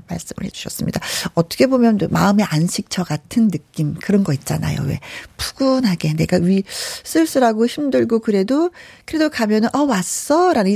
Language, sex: Korean, female